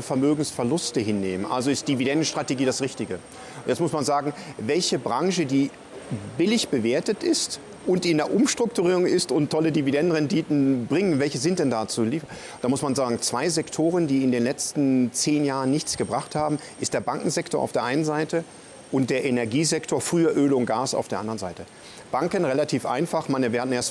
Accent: German